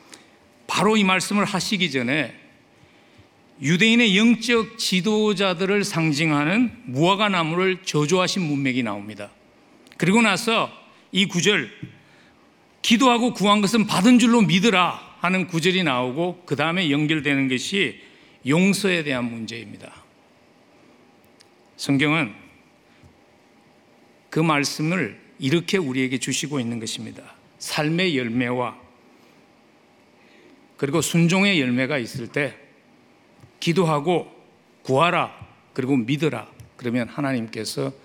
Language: English